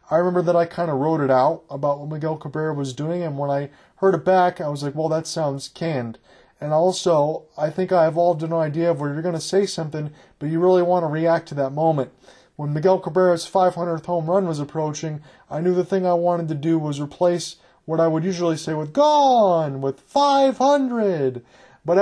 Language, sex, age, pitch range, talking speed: English, male, 30-49, 150-180 Hz, 220 wpm